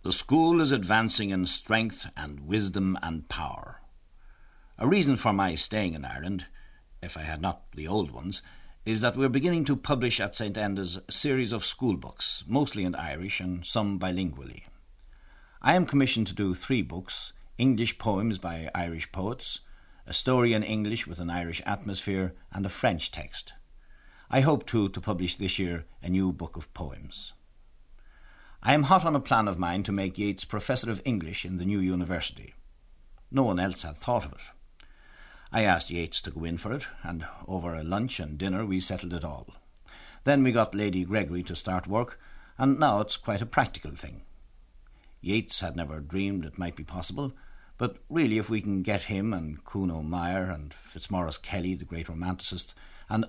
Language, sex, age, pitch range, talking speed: English, male, 60-79, 85-110 Hz, 185 wpm